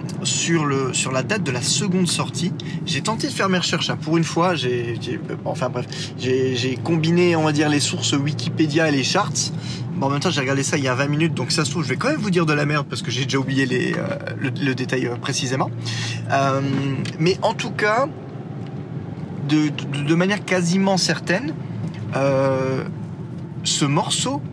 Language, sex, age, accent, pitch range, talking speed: French, male, 20-39, French, 135-165 Hz, 210 wpm